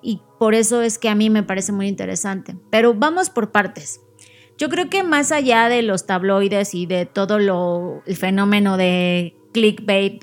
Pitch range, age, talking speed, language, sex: 195-235 Hz, 20-39, 180 wpm, Spanish, female